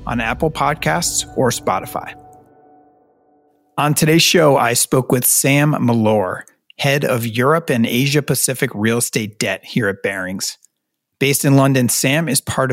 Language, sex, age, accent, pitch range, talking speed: English, male, 40-59, American, 125-155 Hz, 140 wpm